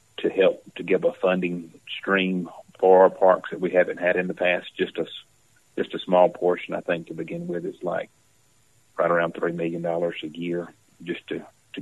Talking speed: 195 wpm